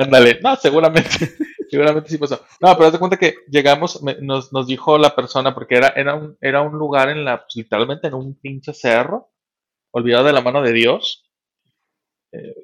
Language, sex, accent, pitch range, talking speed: Spanish, male, Mexican, 120-155 Hz, 180 wpm